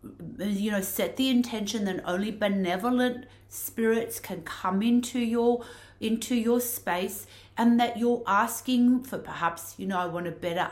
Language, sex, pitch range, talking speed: English, female, 195-255 Hz, 155 wpm